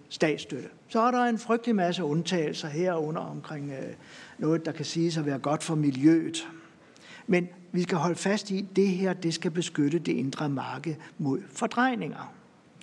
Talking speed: 170 wpm